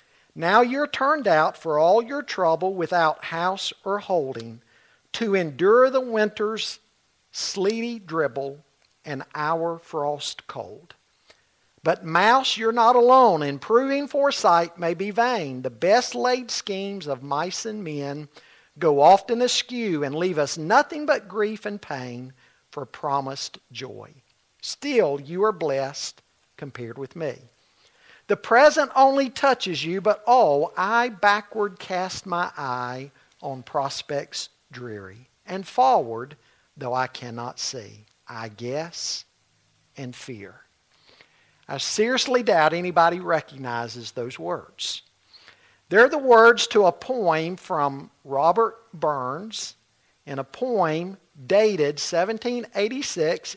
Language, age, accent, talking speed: English, 50-69, American, 120 wpm